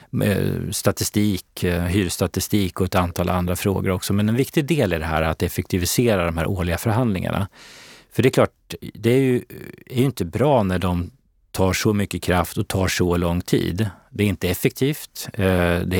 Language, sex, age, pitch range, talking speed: Swedish, male, 30-49, 90-110 Hz, 180 wpm